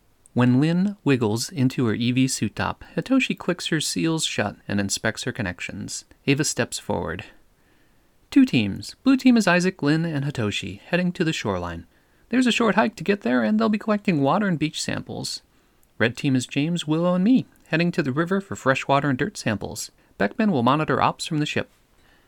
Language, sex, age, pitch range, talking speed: English, male, 30-49, 105-160 Hz, 195 wpm